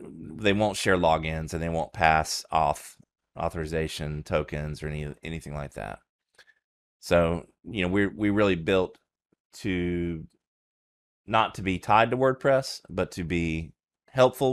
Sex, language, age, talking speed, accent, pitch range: male, English, 30-49, 140 wpm, American, 80-100 Hz